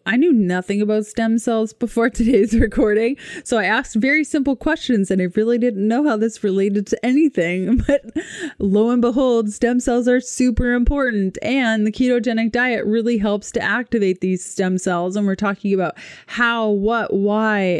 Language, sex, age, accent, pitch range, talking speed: English, female, 20-39, American, 195-235 Hz, 175 wpm